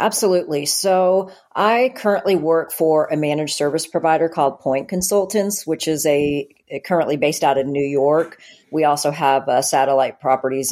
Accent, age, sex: American, 40-59, female